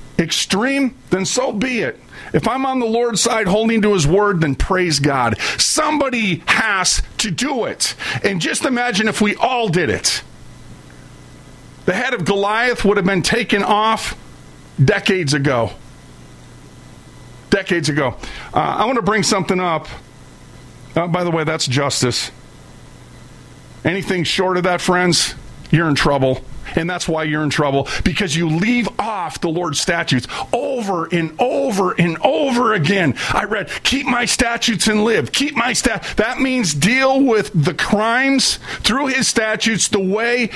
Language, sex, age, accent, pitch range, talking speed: English, male, 40-59, American, 155-225 Hz, 155 wpm